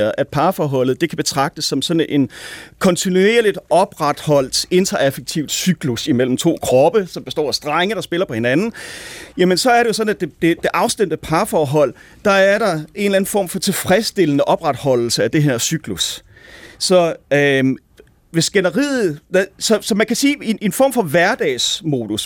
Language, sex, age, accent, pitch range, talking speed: Danish, male, 40-59, native, 155-210 Hz, 165 wpm